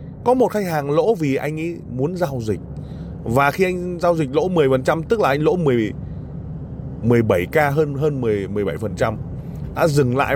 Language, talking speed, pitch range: Vietnamese, 180 wpm, 120-155 Hz